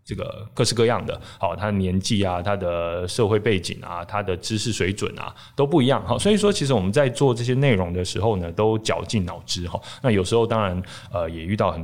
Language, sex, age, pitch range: Chinese, male, 20-39, 95-125 Hz